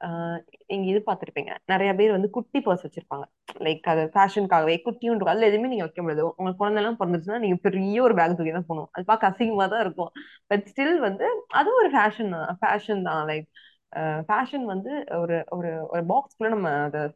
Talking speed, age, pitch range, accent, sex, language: 75 wpm, 20-39, 170-220 Hz, native, female, Tamil